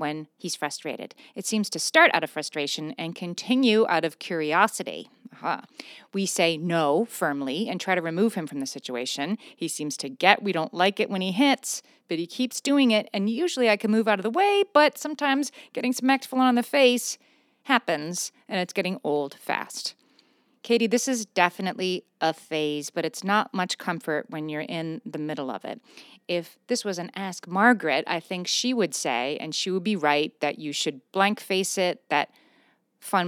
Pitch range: 155-230 Hz